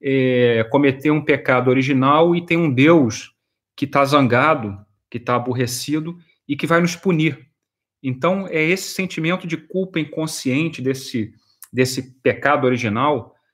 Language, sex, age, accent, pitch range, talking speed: Portuguese, male, 30-49, Brazilian, 120-160 Hz, 135 wpm